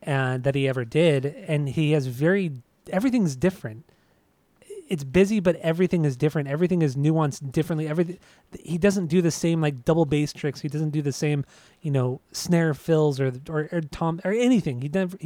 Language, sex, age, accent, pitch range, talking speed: English, male, 30-49, American, 130-160 Hz, 190 wpm